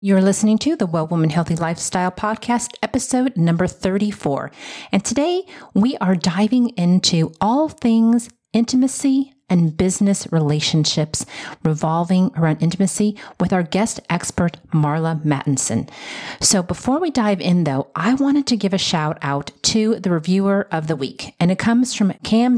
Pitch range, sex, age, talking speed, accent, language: 160-215 Hz, female, 40-59, 150 wpm, American, English